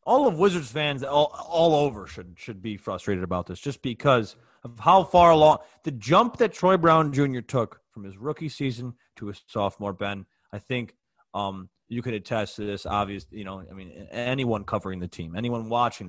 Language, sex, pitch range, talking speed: English, male, 105-150 Hz, 200 wpm